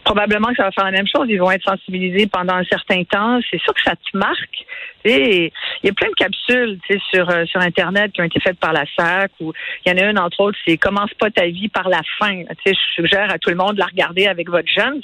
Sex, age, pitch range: female, 50-69, 190-250 Hz